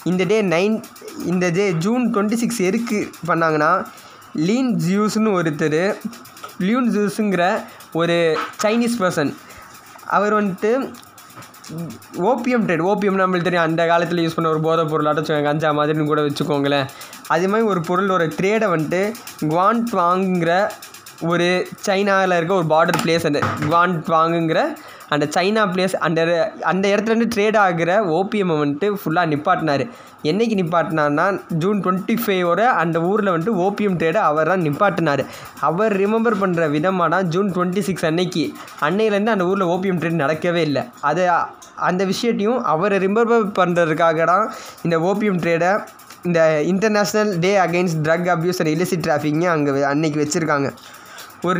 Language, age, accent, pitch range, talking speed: Tamil, 20-39, native, 165-205 Hz, 135 wpm